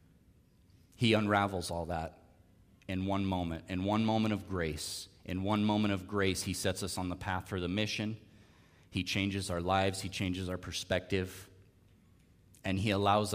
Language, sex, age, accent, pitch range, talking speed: English, male, 30-49, American, 90-105 Hz, 165 wpm